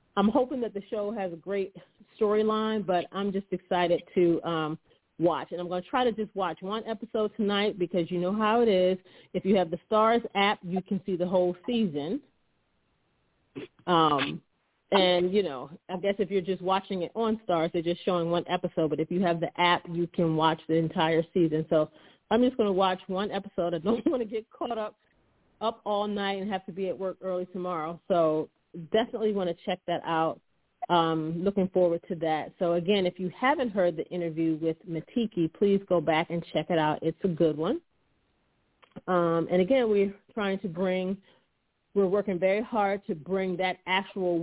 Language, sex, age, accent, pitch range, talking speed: English, female, 40-59, American, 170-200 Hz, 200 wpm